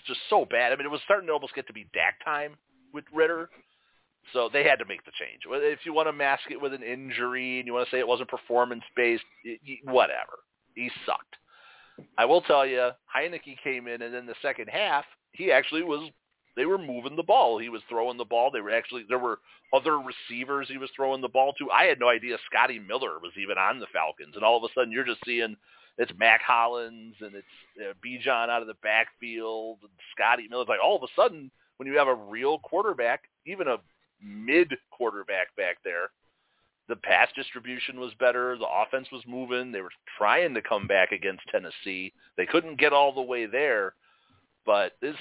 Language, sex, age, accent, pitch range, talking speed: English, male, 40-59, American, 120-170 Hz, 220 wpm